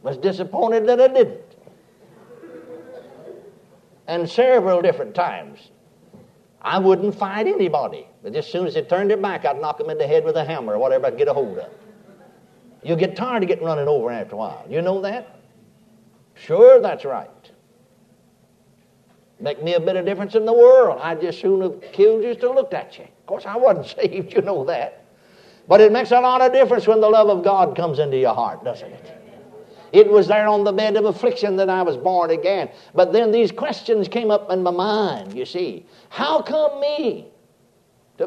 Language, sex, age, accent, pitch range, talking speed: English, male, 60-79, American, 180-290 Hz, 200 wpm